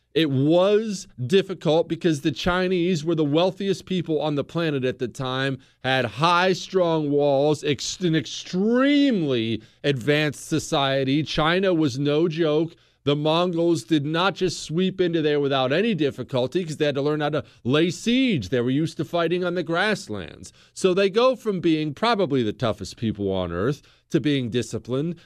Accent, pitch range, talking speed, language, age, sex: American, 130-185 Hz, 165 wpm, English, 40-59, male